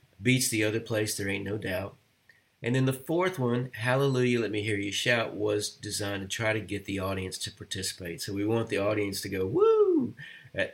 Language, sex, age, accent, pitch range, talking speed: English, male, 40-59, American, 100-125 Hz, 210 wpm